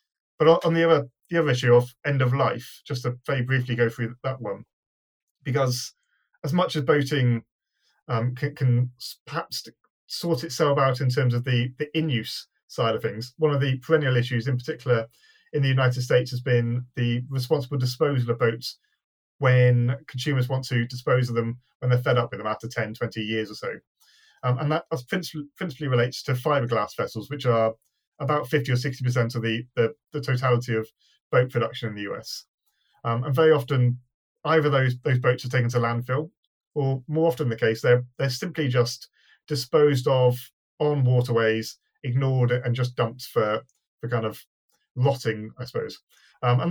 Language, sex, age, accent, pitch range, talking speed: English, male, 30-49, British, 120-145 Hz, 180 wpm